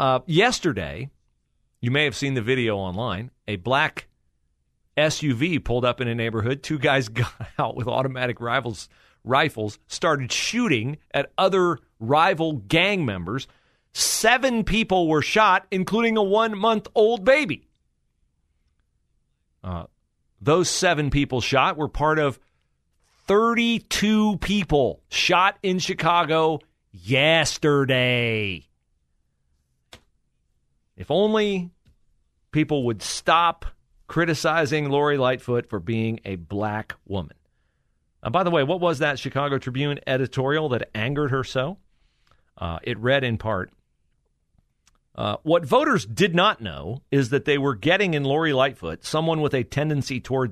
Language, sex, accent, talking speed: English, male, American, 125 wpm